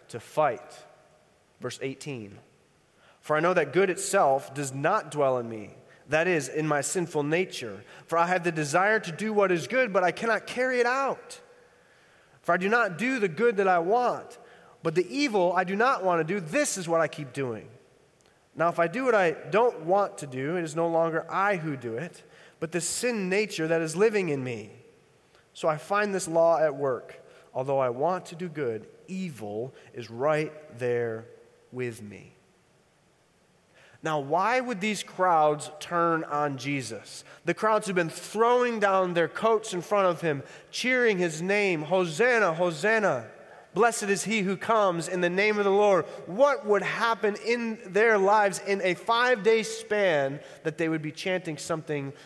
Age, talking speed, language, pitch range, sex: 30-49, 185 wpm, English, 155-210 Hz, male